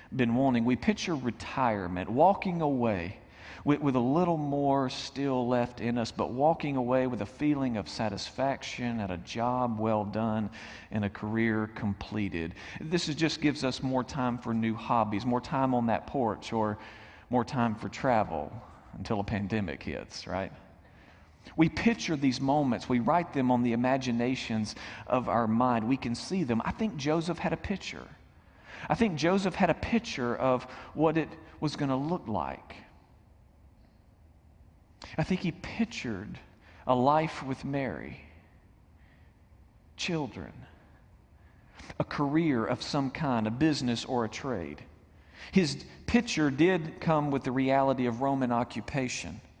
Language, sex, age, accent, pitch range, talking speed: English, male, 40-59, American, 105-145 Hz, 150 wpm